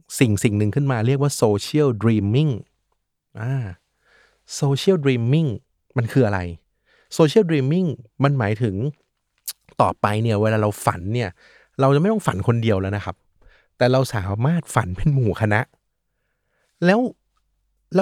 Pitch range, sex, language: 115-150 Hz, male, Thai